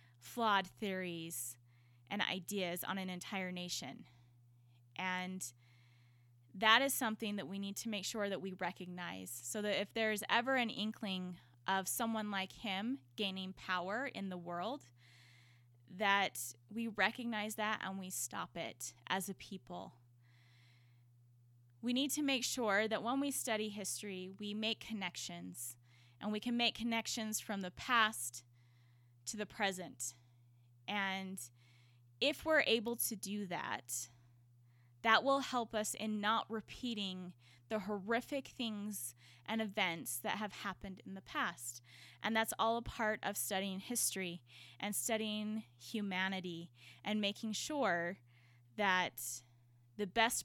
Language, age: English, 10-29